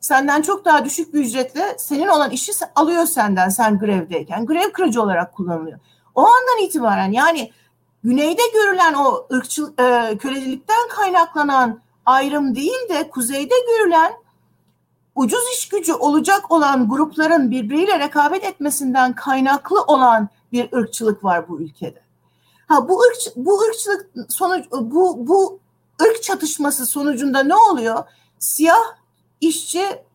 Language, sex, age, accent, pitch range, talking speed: German, female, 50-69, Turkish, 250-375 Hz, 125 wpm